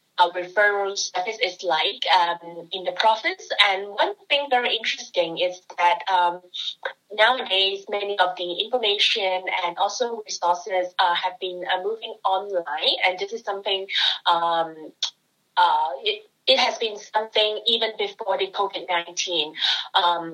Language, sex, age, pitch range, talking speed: English, female, 20-39, 175-205 Hz, 140 wpm